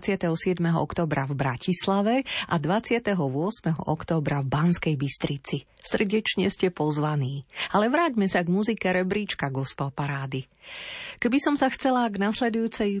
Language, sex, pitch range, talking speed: Slovak, female, 155-215 Hz, 125 wpm